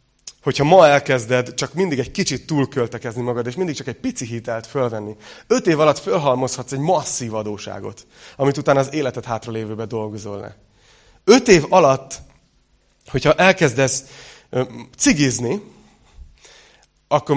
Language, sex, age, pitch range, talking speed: Hungarian, male, 30-49, 120-155 Hz, 130 wpm